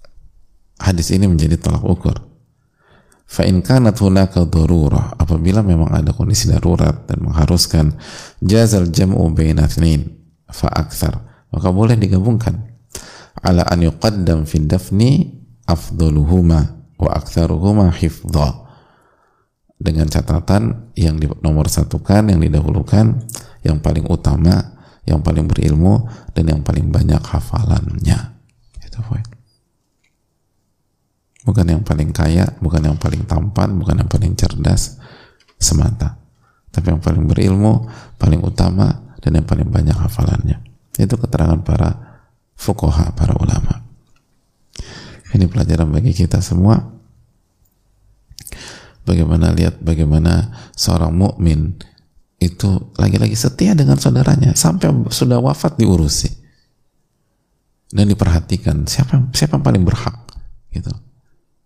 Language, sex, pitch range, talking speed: Indonesian, male, 80-110 Hz, 105 wpm